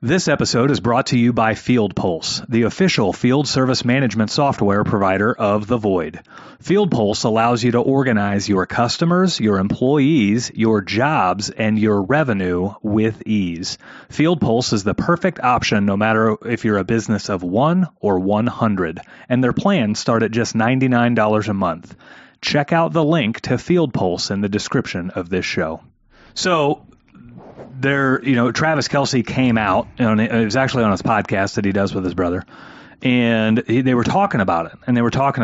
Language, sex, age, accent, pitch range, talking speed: English, male, 30-49, American, 105-135 Hz, 185 wpm